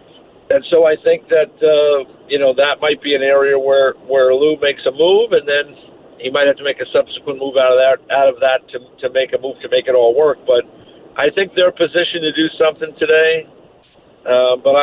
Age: 50-69